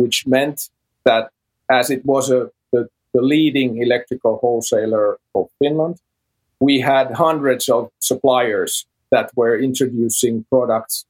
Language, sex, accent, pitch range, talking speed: English, male, Finnish, 120-140 Hz, 125 wpm